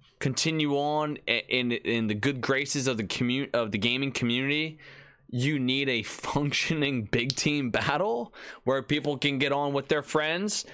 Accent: American